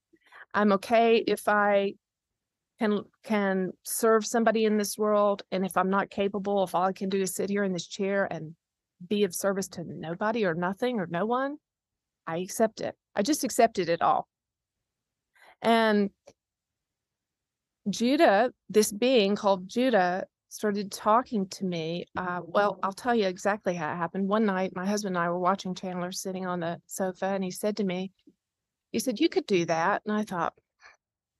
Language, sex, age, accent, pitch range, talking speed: English, female, 30-49, American, 185-230 Hz, 175 wpm